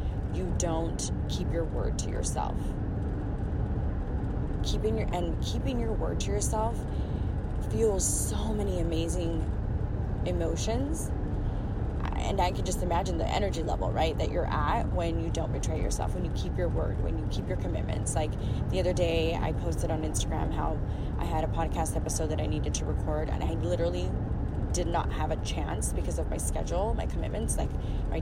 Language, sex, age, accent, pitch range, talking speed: English, female, 20-39, American, 80-100 Hz, 175 wpm